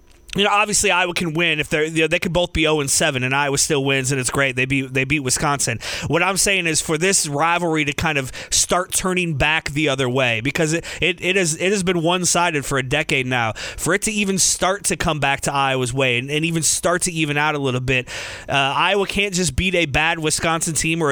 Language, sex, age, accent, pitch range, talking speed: English, male, 30-49, American, 140-170 Hz, 245 wpm